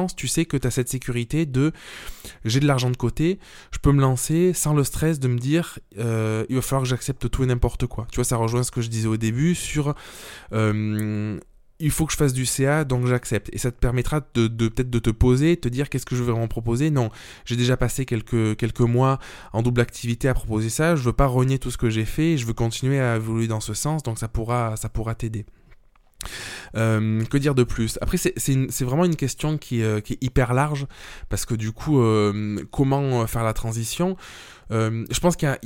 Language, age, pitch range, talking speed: French, 20-39, 110-140 Hz, 240 wpm